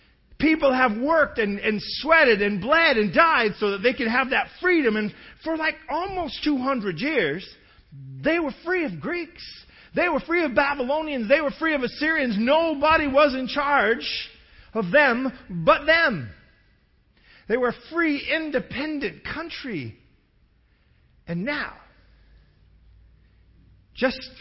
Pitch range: 175-280 Hz